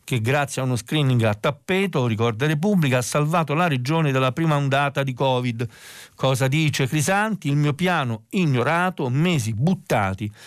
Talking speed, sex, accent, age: 155 wpm, male, native, 50-69